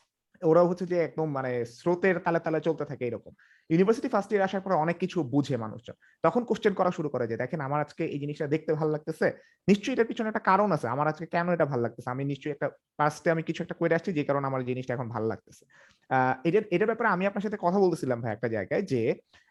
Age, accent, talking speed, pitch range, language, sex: 30-49, native, 45 wpm, 140-190 Hz, Bengali, male